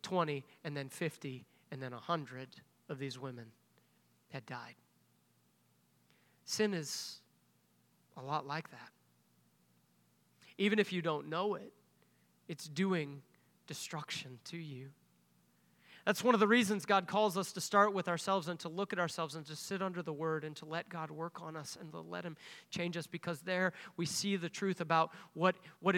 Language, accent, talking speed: English, American, 170 wpm